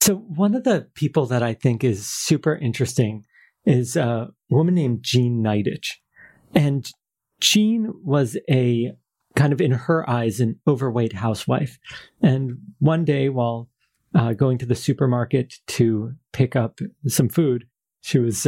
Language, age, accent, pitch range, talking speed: English, 40-59, American, 115-140 Hz, 145 wpm